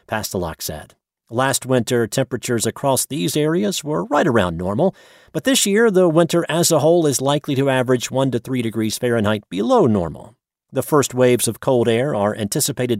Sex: male